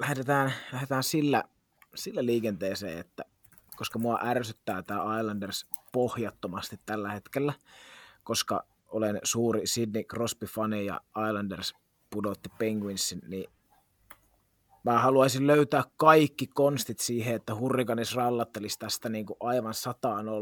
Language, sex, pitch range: Finnish, male, 110-140 Hz